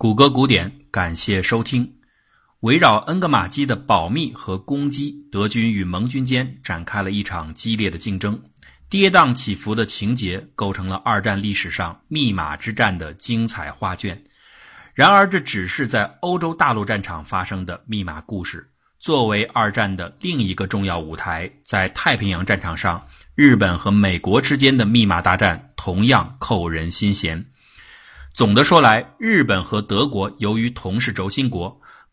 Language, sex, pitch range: Chinese, male, 95-120 Hz